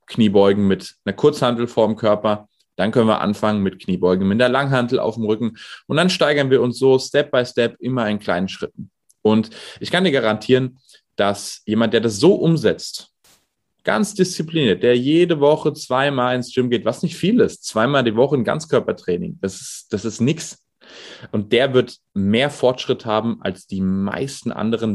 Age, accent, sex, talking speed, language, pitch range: 30-49, German, male, 180 wpm, German, 105-130 Hz